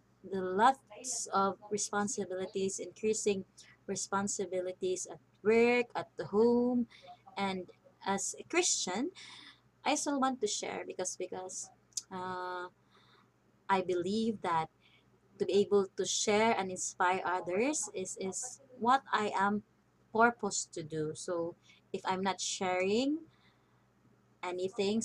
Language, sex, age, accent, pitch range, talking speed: English, female, 20-39, Filipino, 185-235 Hz, 115 wpm